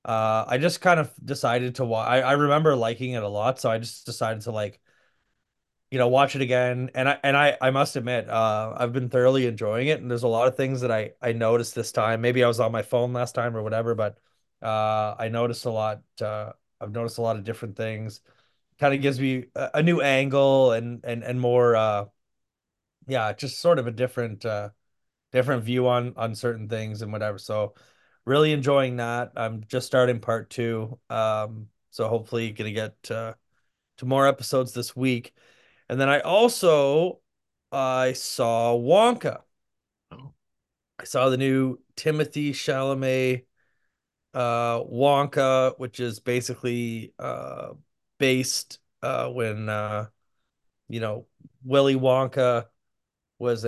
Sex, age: male, 30-49